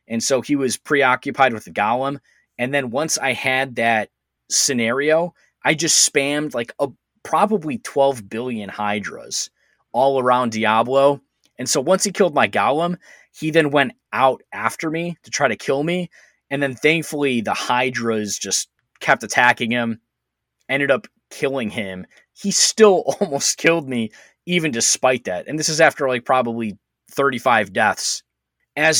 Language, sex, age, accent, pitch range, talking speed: English, male, 20-39, American, 115-150 Hz, 155 wpm